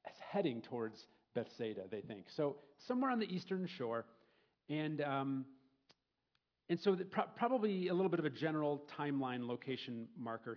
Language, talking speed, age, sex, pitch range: English, 150 wpm, 40-59, male, 125-170 Hz